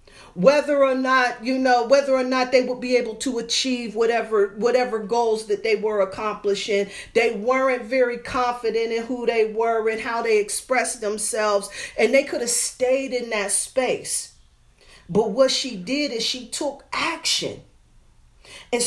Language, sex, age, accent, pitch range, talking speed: English, female, 40-59, American, 205-275 Hz, 160 wpm